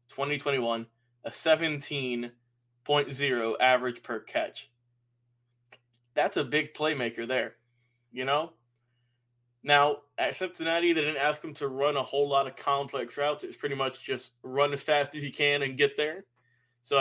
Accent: American